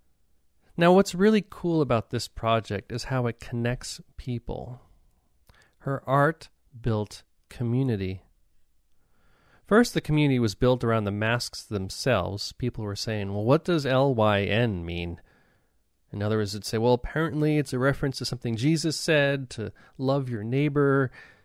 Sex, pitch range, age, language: male, 105-140 Hz, 30-49, English